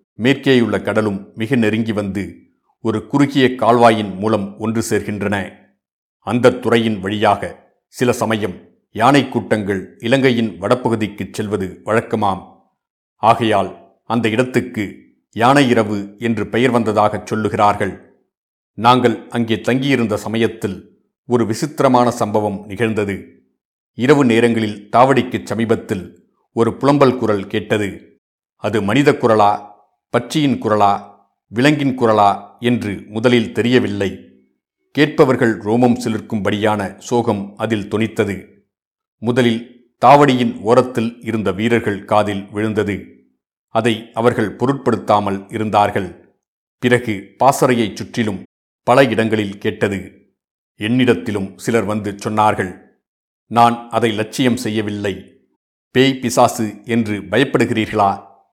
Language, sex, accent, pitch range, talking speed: Tamil, male, native, 105-120 Hz, 95 wpm